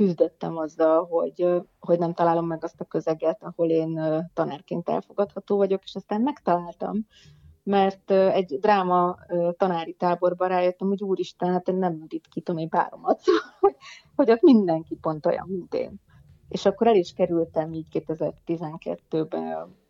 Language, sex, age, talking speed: Hungarian, female, 30-49, 140 wpm